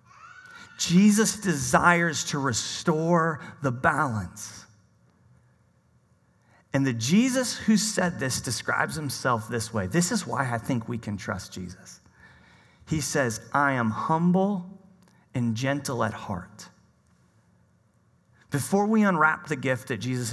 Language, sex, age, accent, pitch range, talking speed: English, male, 40-59, American, 115-190 Hz, 120 wpm